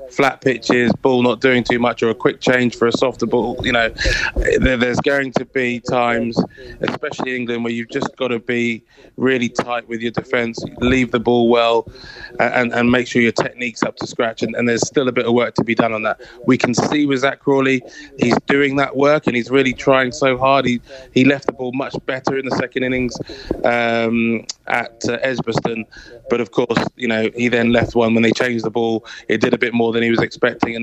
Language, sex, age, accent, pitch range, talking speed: English, male, 20-39, British, 115-130 Hz, 225 wpm